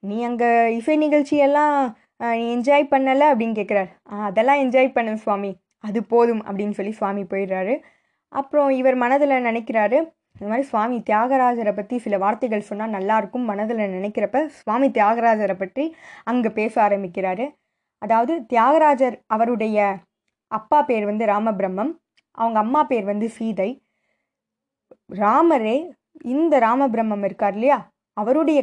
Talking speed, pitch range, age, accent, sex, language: 120 wpm, 210-275 Hz, 20-39, native, female, Tamil